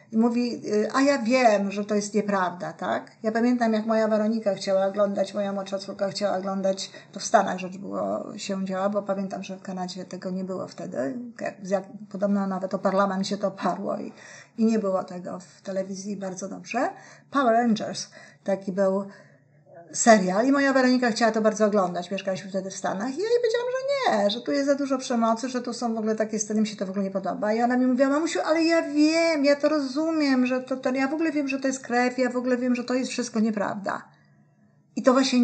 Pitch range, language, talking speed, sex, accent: 195-250 Hz, Polish, 220 wpm, female, native